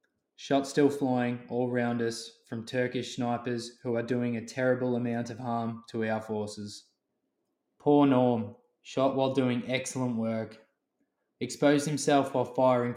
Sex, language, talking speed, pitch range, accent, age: male, English, 145 wpm, 115-135 Hz, Australian, 20-39